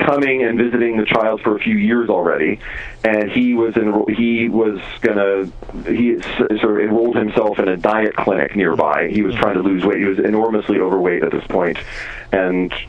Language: English